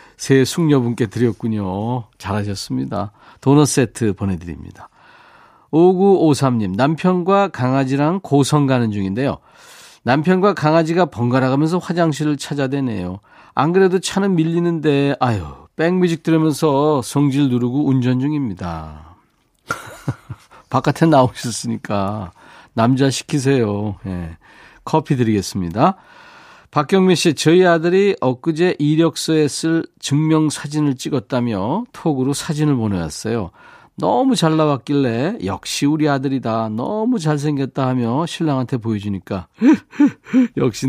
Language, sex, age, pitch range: Korean, male, 40-59, 115-165 Hz